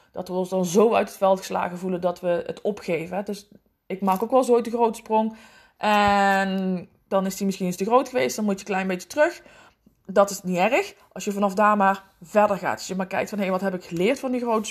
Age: 20-39